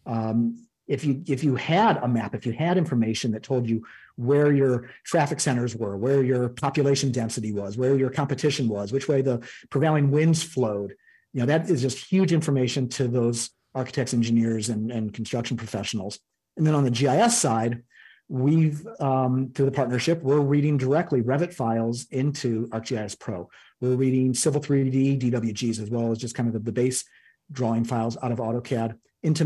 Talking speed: 180 wpm